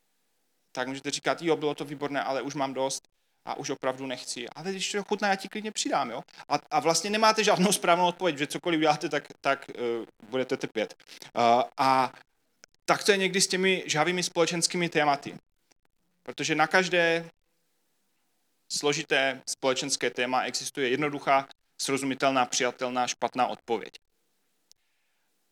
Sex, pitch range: male, 125-170 Hz